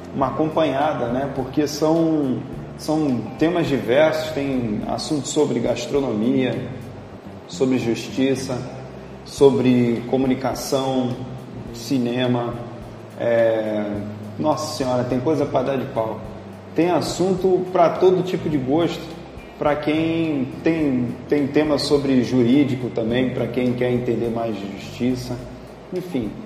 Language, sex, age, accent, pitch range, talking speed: Portuguese, male, 40-59, Brazilian, 115-145 Hz, 110 wpm